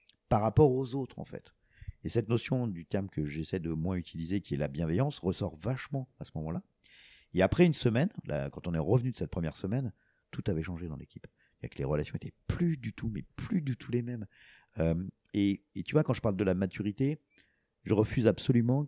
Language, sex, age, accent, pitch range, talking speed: French, male, 50-69, French, 80-120 Hz, 225 wpm